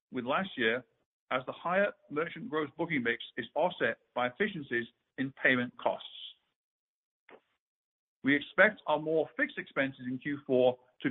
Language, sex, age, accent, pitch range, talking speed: English, male, 50-69, British, 135-180 Hz, 140 wpm